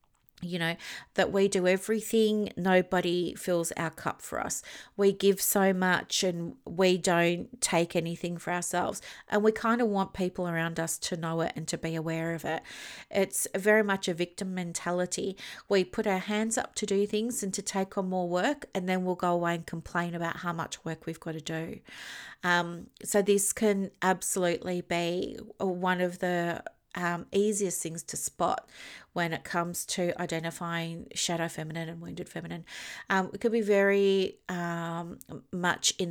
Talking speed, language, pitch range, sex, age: 180 wpm, English, 170-200 Hz, female, 40-59